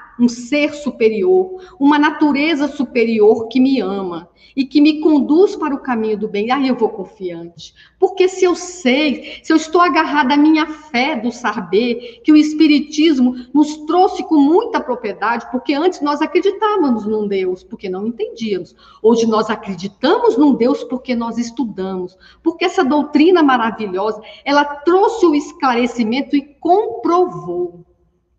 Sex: female